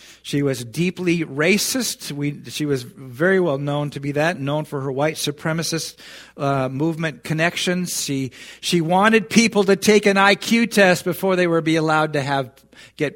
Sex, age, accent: male, 50-69, American